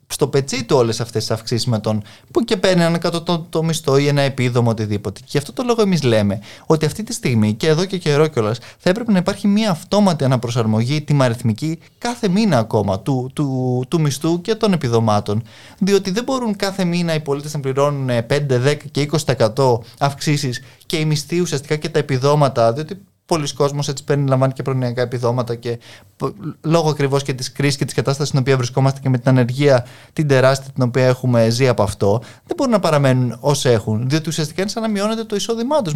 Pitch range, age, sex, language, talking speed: 125-160 Hz, 20-39, male, Greek, 210 wpm